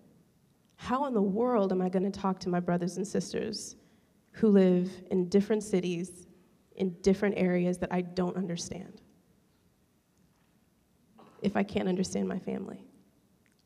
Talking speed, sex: 140 wpm, female